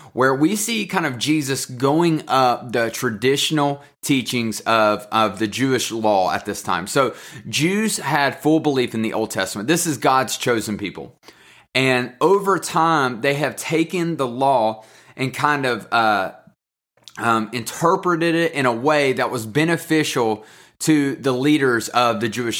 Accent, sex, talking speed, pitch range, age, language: American, male, 160 wpm, 115-155 Hz, 30-49, English